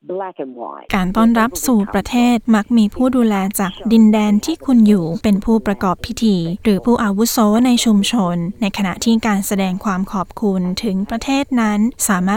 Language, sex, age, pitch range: Thai, female, 10-29, 195-230 Hz